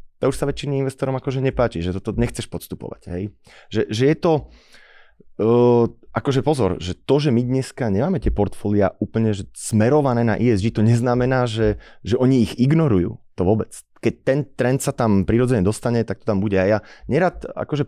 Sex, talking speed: male, 190 wpm